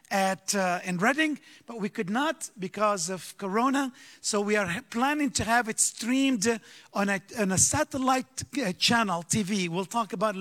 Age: 50-69